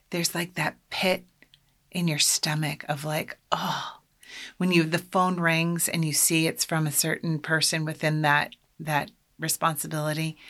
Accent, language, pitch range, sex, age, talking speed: American, English, 145-180 Hz, female, 30-49, 155 wpm